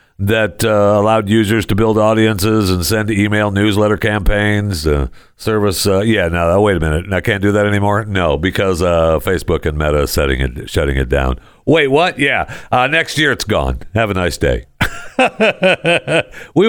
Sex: male